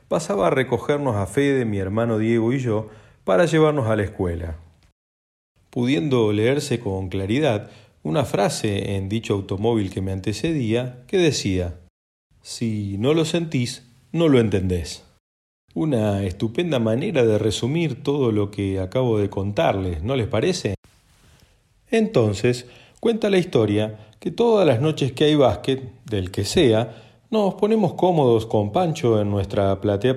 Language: Spanish